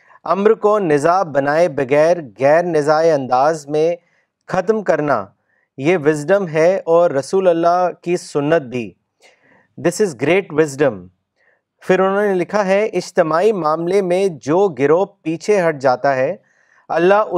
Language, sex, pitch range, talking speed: Urdu, male, 145-190 Hz, 135 wpm